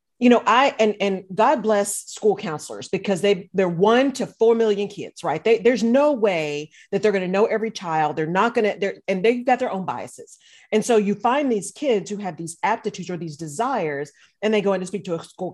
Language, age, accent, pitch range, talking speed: English, 40-59, American, 180-240 Hz, 240 wpm